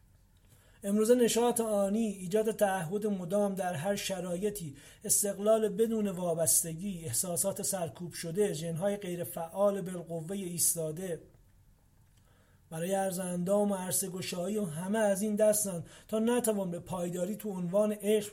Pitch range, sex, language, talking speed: 155-200 Hz, male, Persian, 120 wpm